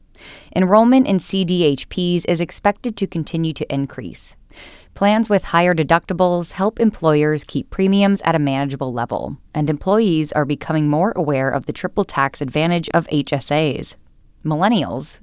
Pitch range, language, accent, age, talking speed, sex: 140-185 Hz, English, American, 10-29, 135 wpm, female